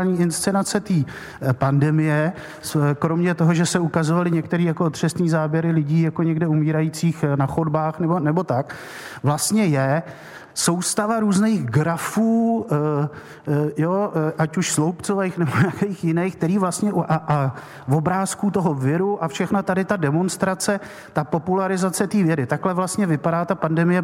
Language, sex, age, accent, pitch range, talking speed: Czech, male, 50-69, native, 160-200 Hz, 135 wpm